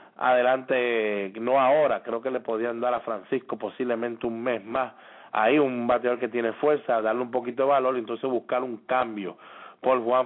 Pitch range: 125-145 Hz